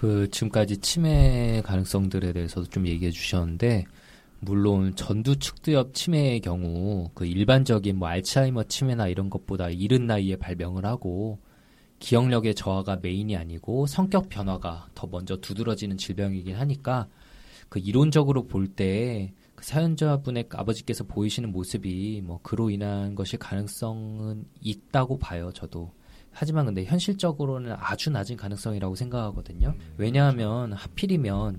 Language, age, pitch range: Korean, 20-39, 95-130 Hz